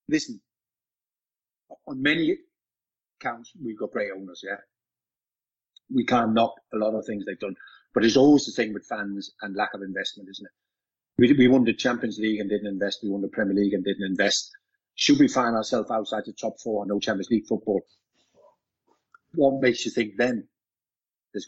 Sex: male